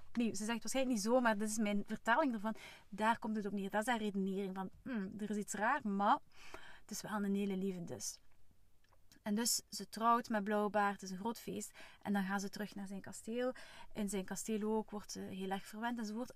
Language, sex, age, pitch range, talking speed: Dutch, female, 30-49, 200-230 Hz, 235 wpm